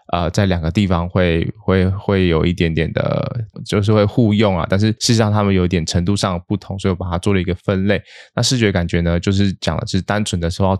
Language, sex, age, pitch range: Chinese, male, 20-39, 90-105 Hz